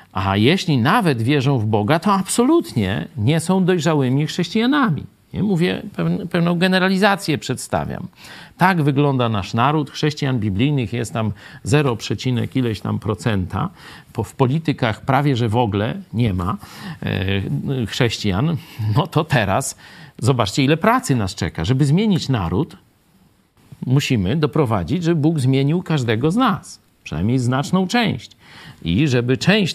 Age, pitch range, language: 50-69, 115-160 Hz, Polish